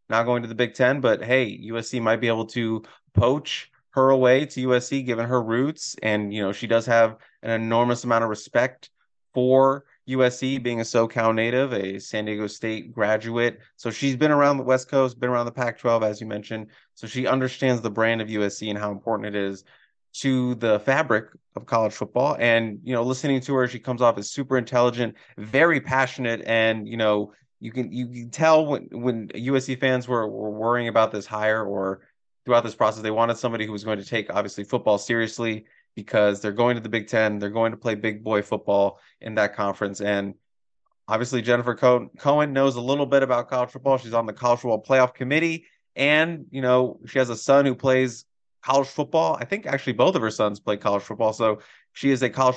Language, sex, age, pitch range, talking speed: English, male, 20-39, 110-130 Hz, 210 wpm